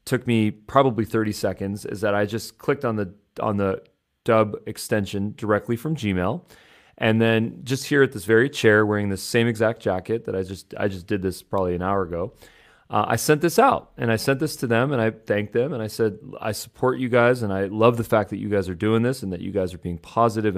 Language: English